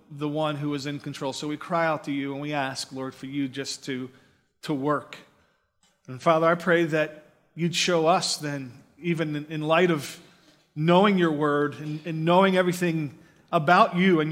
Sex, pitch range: male, 155-195 Hz